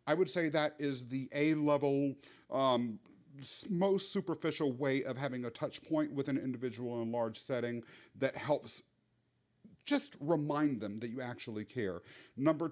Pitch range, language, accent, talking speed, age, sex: 125-165 Hz, English, American, 150 wpm, 40-59, male